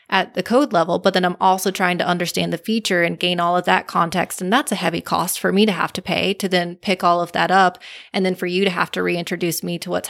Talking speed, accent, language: 285 wpm, American, English